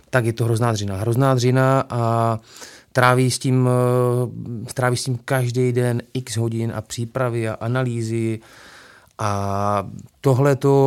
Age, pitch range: 30-49, 115-125 Hz